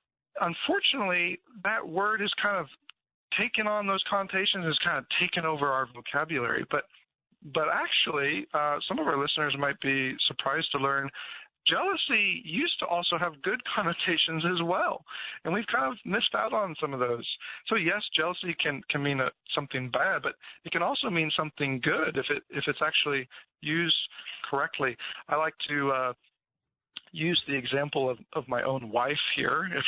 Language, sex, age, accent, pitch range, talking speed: English, male, 40-59, American, 140-185 Hz, 170 wpm